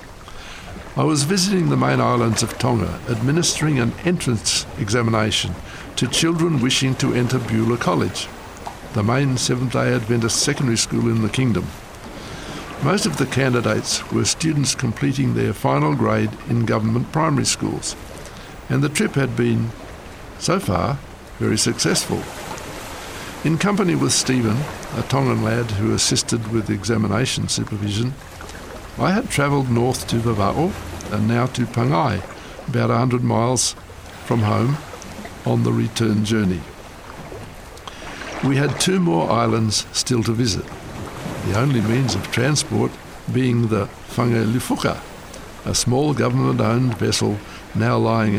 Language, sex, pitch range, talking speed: English, male, 105-130 Hz, 130 wpm